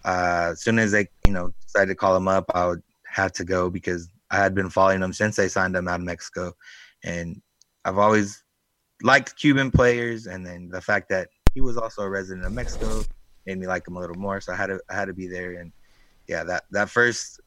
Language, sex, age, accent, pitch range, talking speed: English, male, 20-39, American, 95-110 Hz, 235 wpm